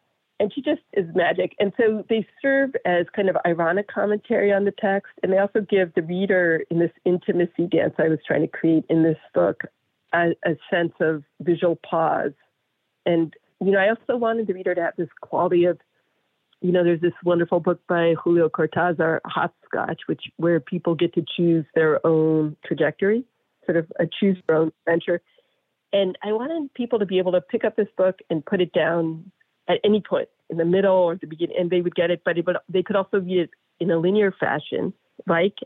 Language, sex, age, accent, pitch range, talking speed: English, female, 50-69, American, 165-200 Hz, 205 wpm